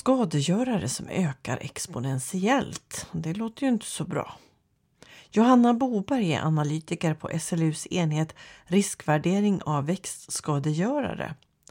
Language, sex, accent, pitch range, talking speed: Swedish, female, native, 155-205 Hz, 105 wpm